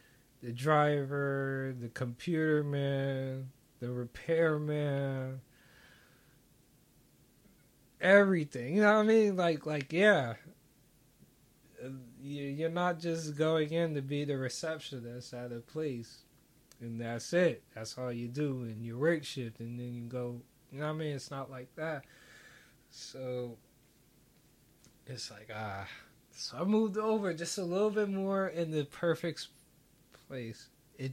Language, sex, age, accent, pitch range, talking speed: English, male, 20-39, American, 115-150 Hz, 135 wpm